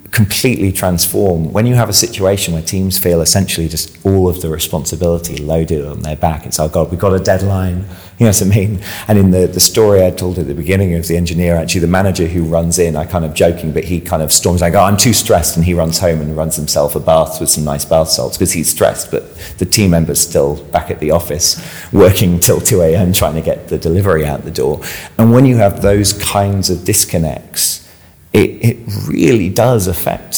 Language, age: English, 30-49